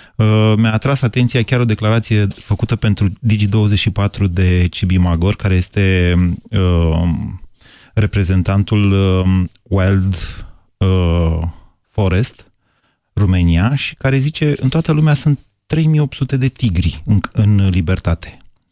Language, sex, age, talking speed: Romanian, male, 30-49, 110 wpm